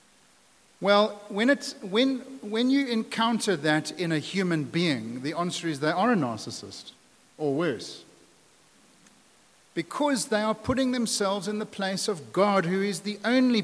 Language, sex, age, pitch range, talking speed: English, male, 50-69, 145-210 Hz, 155 wpm